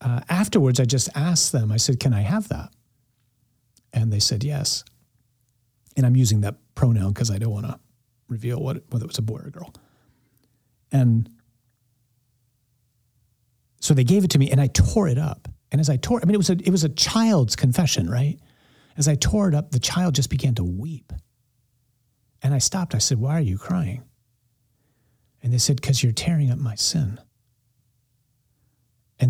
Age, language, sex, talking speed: 40-59, English, male, 190 wpm